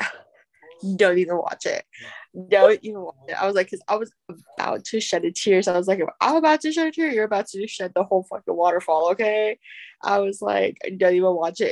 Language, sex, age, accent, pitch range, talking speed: English, female, 20-39, American, 180-220 Hz, 240 wpm